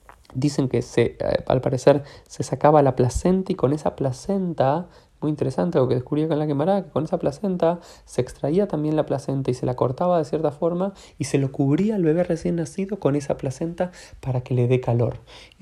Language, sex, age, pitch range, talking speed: Spanish, male, 20-39, 125-150 Hz, 210 wpm